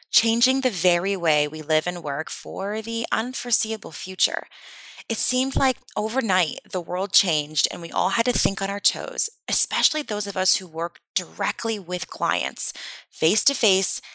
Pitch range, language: 170-240 Hz, English